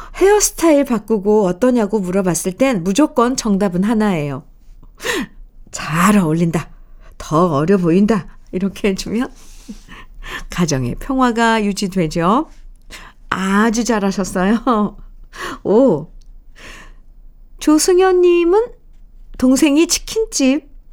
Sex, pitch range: female, 180-255 Hz